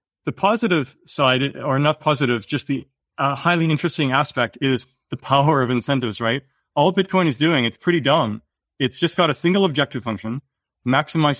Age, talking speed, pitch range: 30-49, 175 wpm, 115-145 Hz